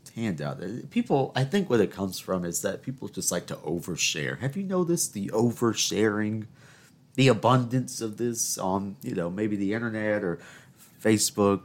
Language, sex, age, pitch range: English, male, 40-59, 95-125 Hz